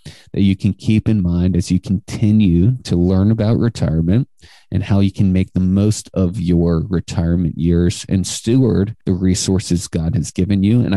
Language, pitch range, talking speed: English, 90-110 Hz, 180 wpm